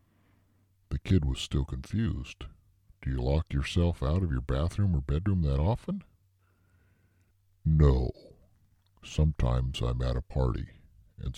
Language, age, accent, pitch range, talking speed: English, 60-79, American, 65-95 Hz, 120 wpm